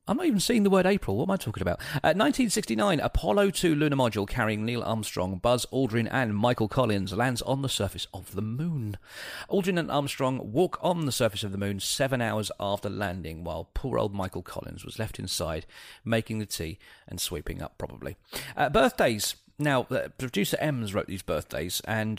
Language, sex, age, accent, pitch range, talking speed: English, male, 40-59, British, 100-135 Hz, 195 wpm